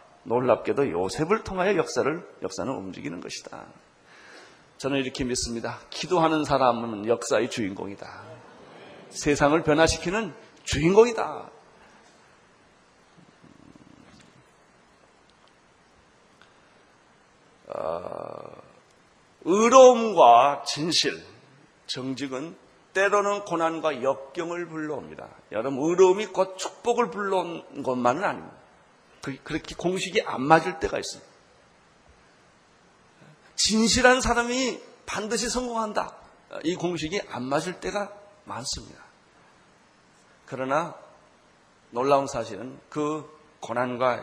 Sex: male